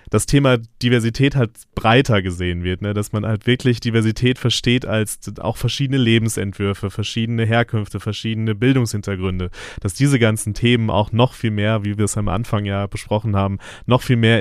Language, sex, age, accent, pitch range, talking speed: German, male, 30-49, German, 105-125 Hz, 170 wpm